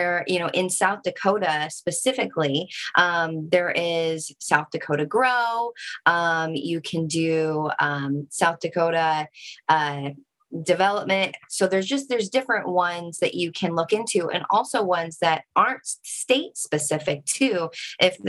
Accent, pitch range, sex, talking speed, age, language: American, 165-205 Hz, female, 140 wpm, 20-39, English